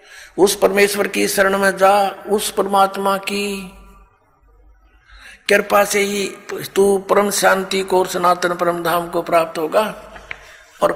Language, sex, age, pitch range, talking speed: Hindi, male, 50-69, 180-200 Hz, 120 wpm